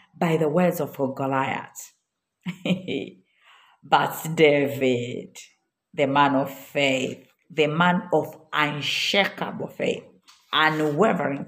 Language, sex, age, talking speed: Swahili, female, 50-69, 95 wpm